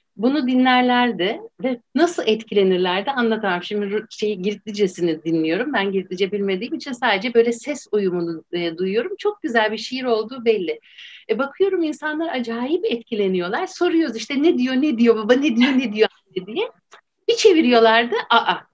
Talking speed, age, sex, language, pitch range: 145 wpm, 60-79, female, Turkish, 200-325 Hz